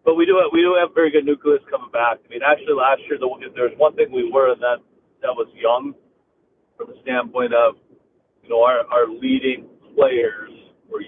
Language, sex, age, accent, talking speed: English, male, 40-59, American, 215 wpm